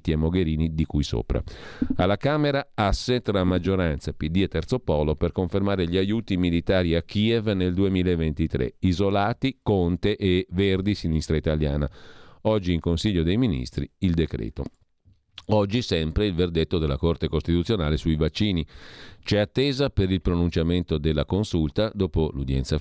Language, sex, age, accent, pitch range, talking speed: Italian, male, 40-59, native, 80-100 Hz, 140 wpm